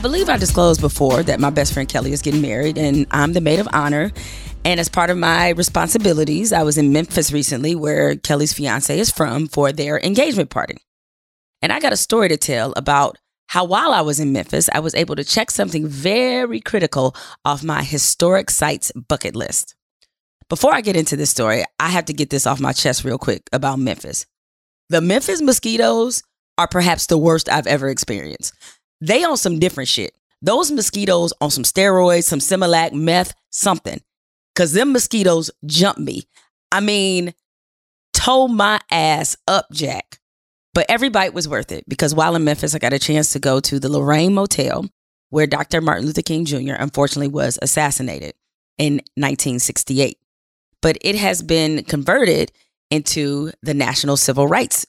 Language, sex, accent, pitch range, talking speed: English, female, American, 140-175 Hz, 175 wpm